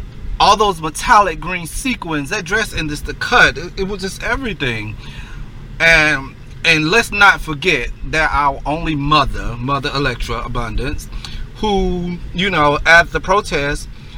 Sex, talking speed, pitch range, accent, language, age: male, 140 wpm, 145-195 Hz, American, English, 30-49